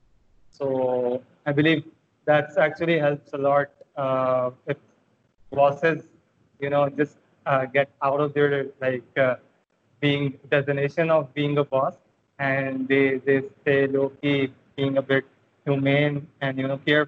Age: 20-39